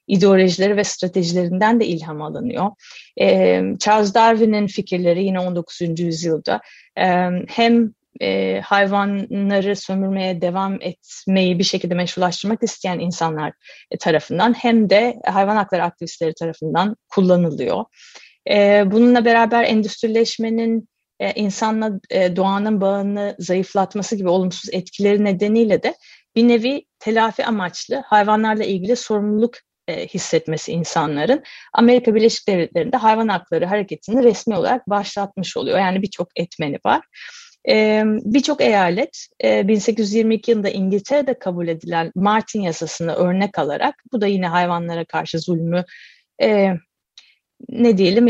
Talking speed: 115 wpm